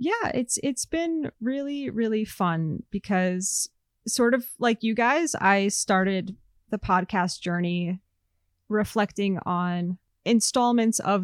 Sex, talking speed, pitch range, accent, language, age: female, 115 wpm, 180-230 Hz, American, English, 20-39